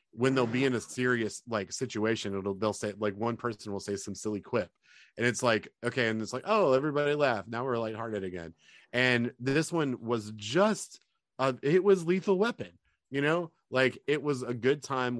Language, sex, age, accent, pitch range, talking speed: English, male, 30-49, American, 100-130 Hz, 200 wpm